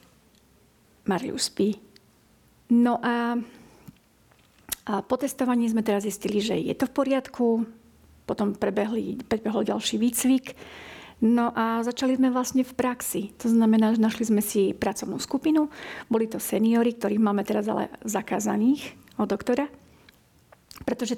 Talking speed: 130 wpm